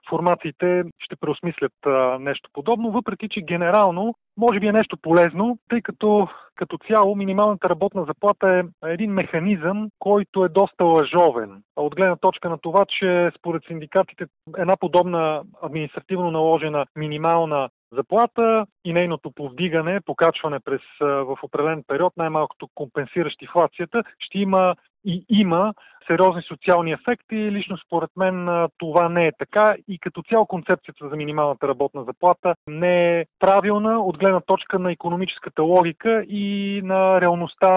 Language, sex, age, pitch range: Bulgarian, male, 30-49, 160-195 Hz